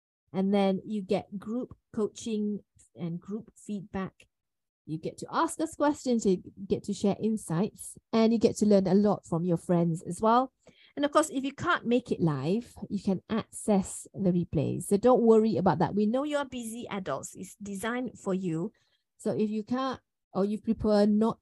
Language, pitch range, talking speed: English, 185-230 Hz, 195 wpm